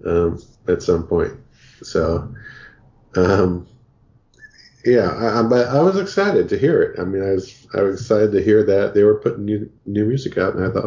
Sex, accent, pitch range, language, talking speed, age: male, American, 85-110 Hz, English, 200 wpm, 40-59